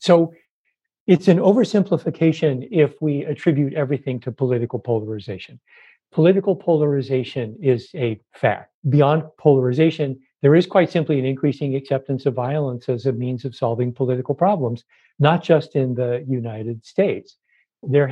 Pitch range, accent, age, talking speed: 130-155 Hz, American, 50-69, 135 wpm